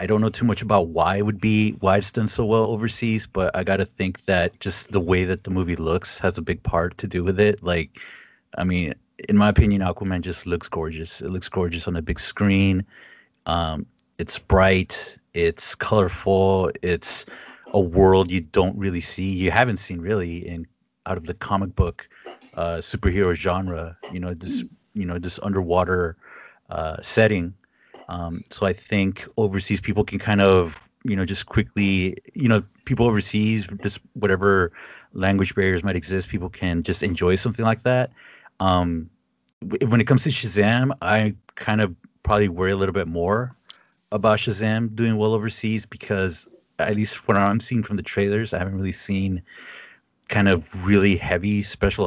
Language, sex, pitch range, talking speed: English, male, 90-105 Hz, 180 wpm